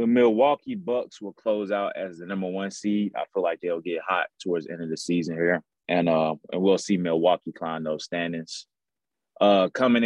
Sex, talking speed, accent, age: male, 210 wpm, American, 20-39